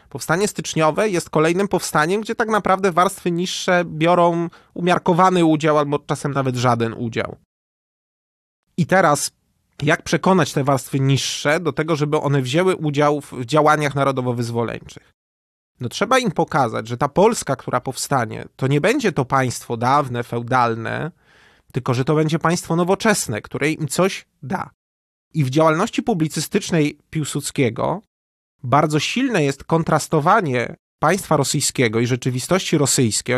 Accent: native